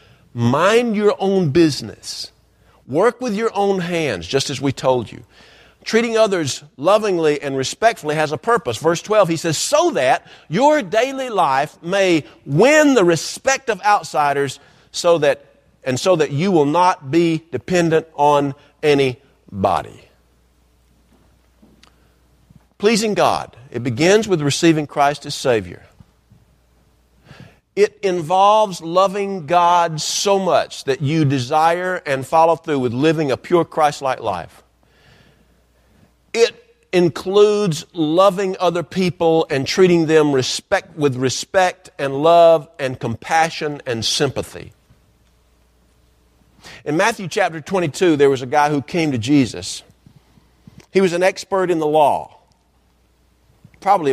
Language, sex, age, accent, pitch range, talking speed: English, male, 50-69, American, 135-190 Hz, 125 wpm